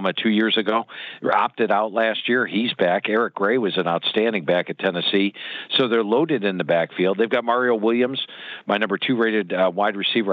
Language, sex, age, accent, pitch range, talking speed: English, male, 50-69, American, 100-130 Hz, 200 wpm